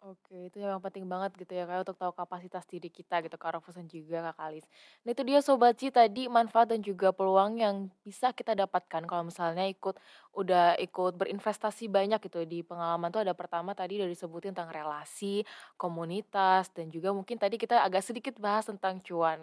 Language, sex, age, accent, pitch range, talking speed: Indonesian, female, 20-39, native, 175-235 Hz, 190 wpm